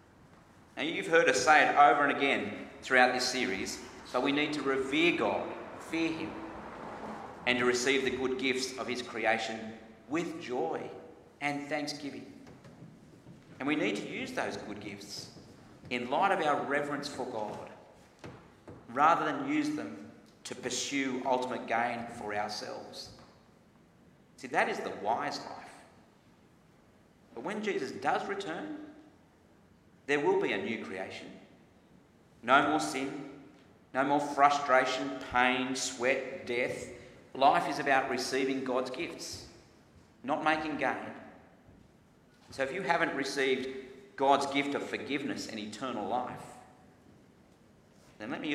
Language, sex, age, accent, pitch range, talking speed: English, male, 40-59, Australian, 120-145 Hz, 135 wpm